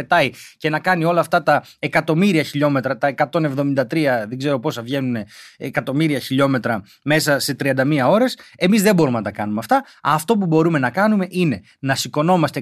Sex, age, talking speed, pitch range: male, 30-49, 165 wpm, 150-205 Hz